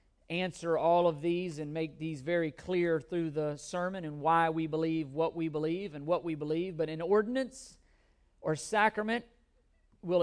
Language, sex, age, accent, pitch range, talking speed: English, male, 40-59, American, 165-200 Hz, 170 wpm